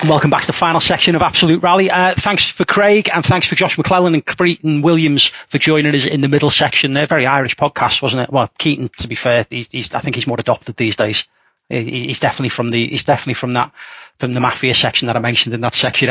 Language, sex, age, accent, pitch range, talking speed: English, male, 30-49, British, 130-155 Hz, 245 wpm